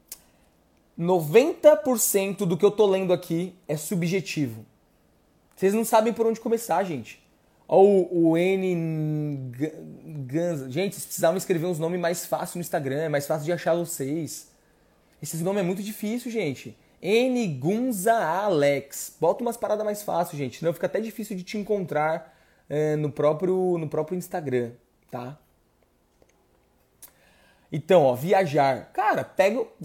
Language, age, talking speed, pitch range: Portuguese, 20-39, 145 wpm, 155-210 Hz